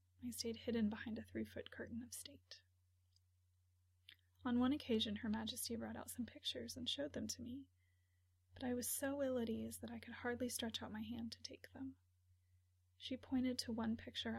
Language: English